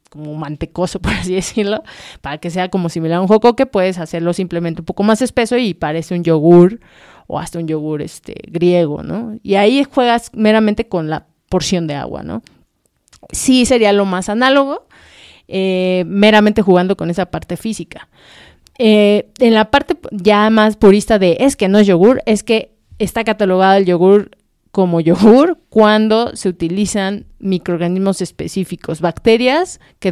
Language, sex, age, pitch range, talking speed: Spanish, female, 30-49, 175-220 Hz, 160 wpm